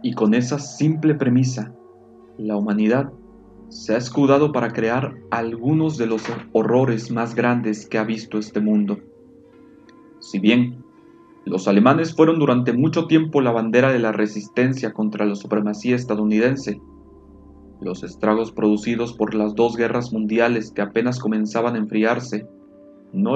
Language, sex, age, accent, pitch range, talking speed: Spanish, male, 40-59, Mexican, 105-130 Hz, 140 wpm